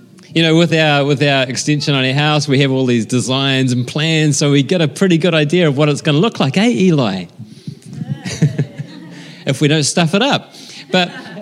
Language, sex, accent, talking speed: English, male, Australian, 210 wpm